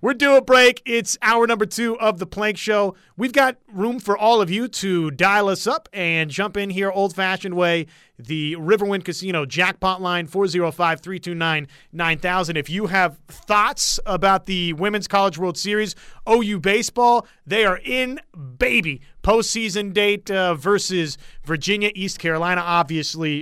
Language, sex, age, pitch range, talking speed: English, male, 30-49, 160-210 Hz, 150 wpm